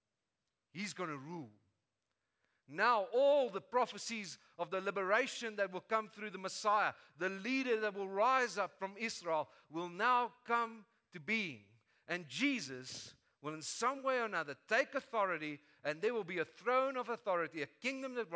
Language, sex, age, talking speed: English, male, 50-69, 170 wpm